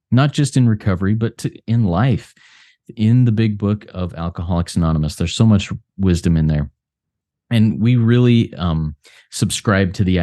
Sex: male